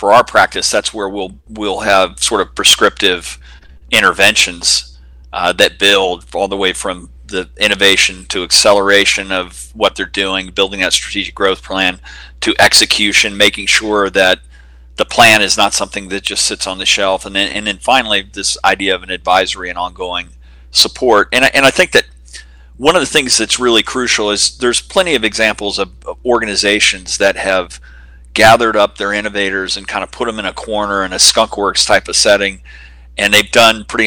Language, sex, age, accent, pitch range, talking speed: English, male, 40-59, American, 65-105 Hz, 185 wpm